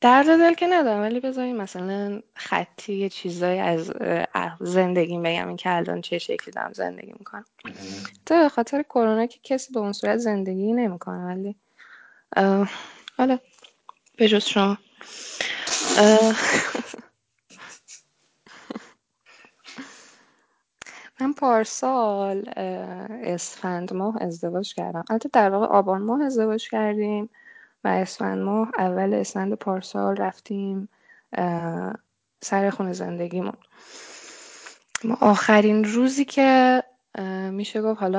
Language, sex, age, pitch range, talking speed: Persian, female, 10-29, 180-225 Hz, 105 wpm